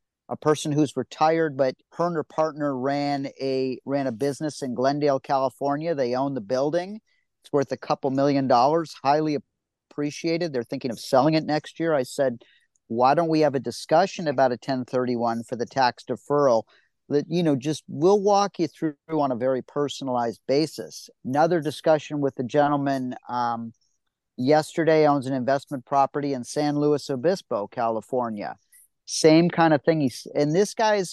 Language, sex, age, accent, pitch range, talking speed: English, male, 40-59, American, 130-160 Hz, 170 wpm